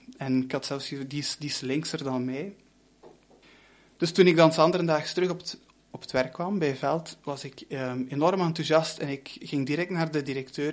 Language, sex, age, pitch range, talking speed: Dutch, male, 20-39, 135-165 Hz, 215 wpm